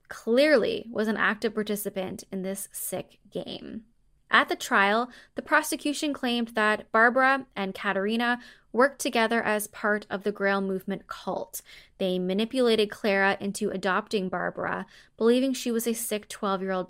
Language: English